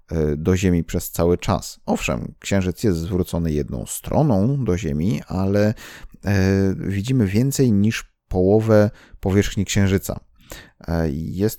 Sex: male